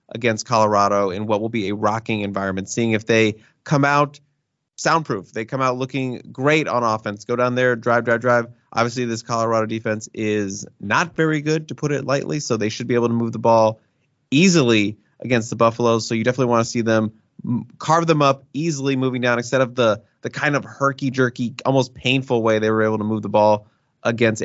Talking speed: 210 wpm